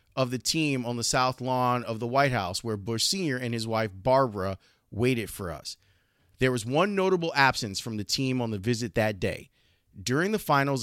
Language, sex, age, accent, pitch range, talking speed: English, male, 30-49, American, 110-150 Hz, 205 wpm